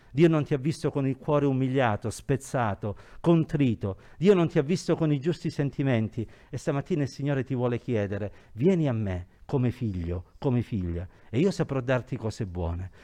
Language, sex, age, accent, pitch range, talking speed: Italian, male, 50-69, native, 120-185 Hz, 185 wpm